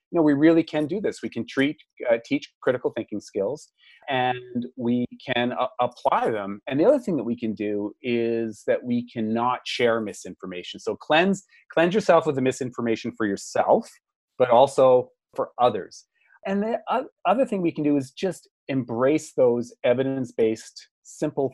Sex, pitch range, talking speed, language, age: male, 110-145 Hz, 175 wpm, English, 30-49